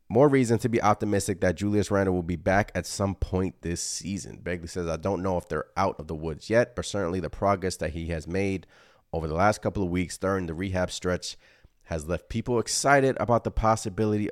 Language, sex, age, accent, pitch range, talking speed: English, male, 30-49, American, 90-110 Hz, 220 wpm